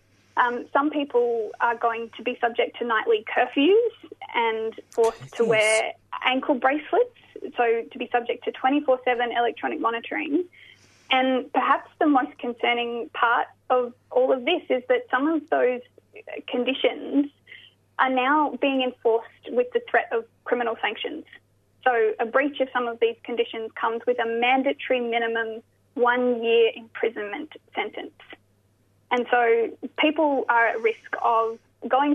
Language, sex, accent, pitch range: English, female, Australian, 235-295 Hz